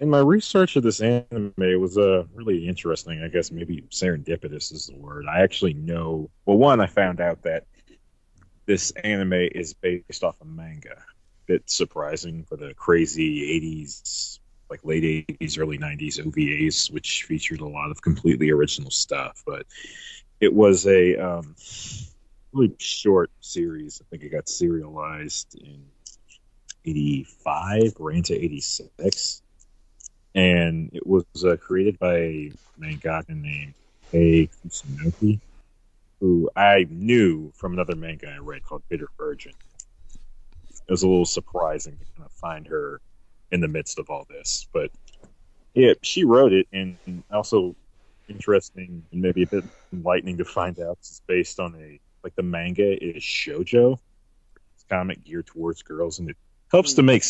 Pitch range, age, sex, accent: 80-105 Hz, 30-49, male, American